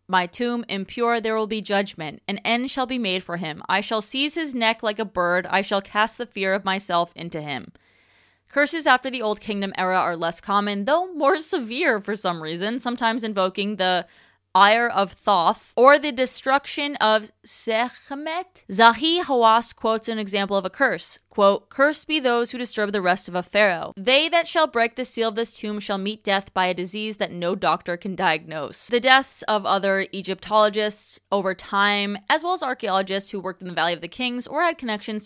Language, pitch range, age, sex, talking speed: English, 185-240 Hz, 20-39, female, 200 wpm